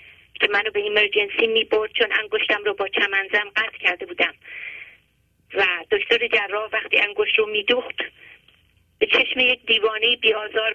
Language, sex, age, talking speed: English, female, 30-49, 150 wpm